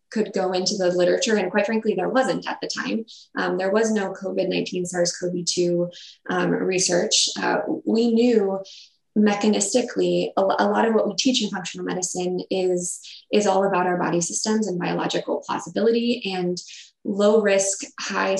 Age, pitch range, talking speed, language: 20-39, 180-215 Hz, 155 wpm, English